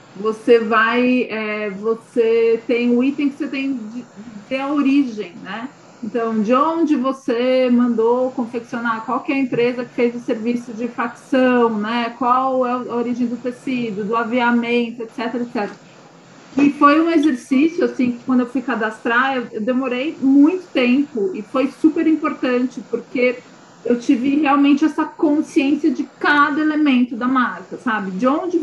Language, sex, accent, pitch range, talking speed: Portuguese, female, Brazilian, 225-270 Hz, 160 wpm